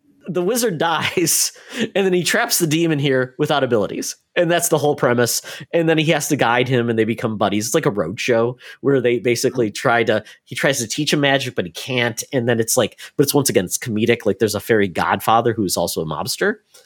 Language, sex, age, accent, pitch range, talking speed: English, male, 30-49, American, 110-145 Hz, 235 wpm